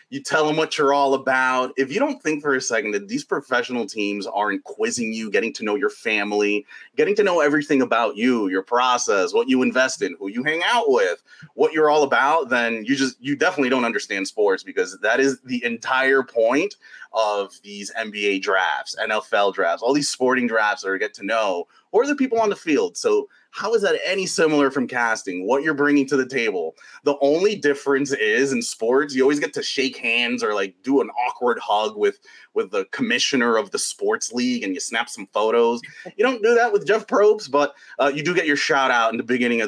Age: 30-49